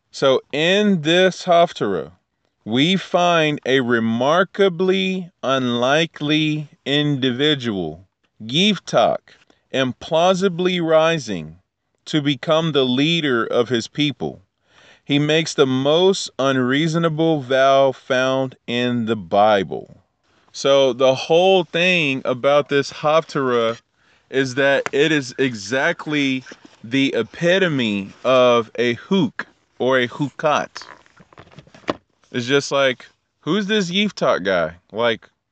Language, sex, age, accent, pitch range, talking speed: English, male, 30-49, American, 120-160 Hz, 100 wpm